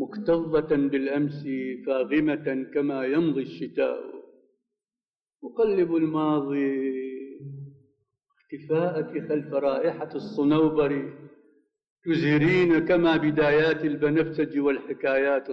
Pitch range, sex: 150-200 Hz, male